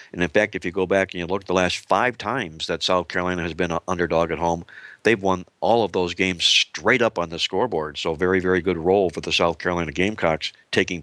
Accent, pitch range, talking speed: American, 85-100 Hz, 245 wpm